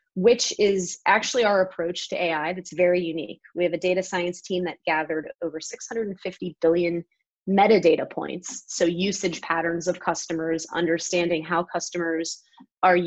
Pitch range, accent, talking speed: 165-200 Hz, American, 145 wpm